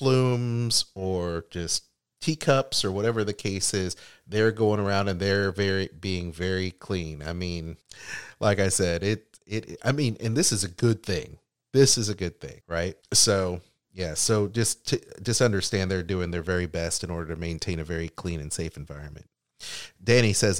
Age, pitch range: 30-49, 85-105 Hz